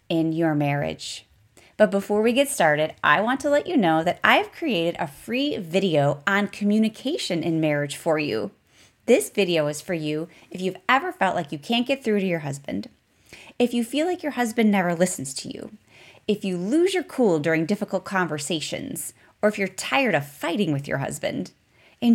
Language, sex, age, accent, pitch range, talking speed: English, female, 30-49, American, 165-245 Hz, 190 wpm